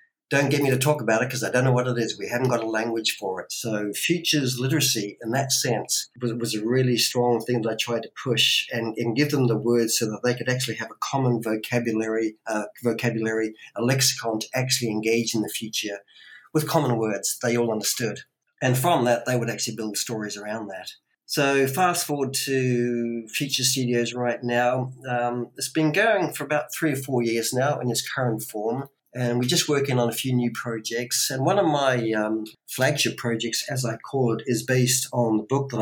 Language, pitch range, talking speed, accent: English, 110-135 Hz, 215 wpm, Australian